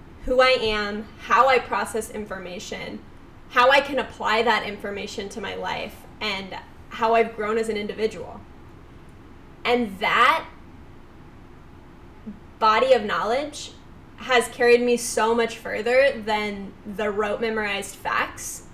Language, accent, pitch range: English, American, 220-260 Hz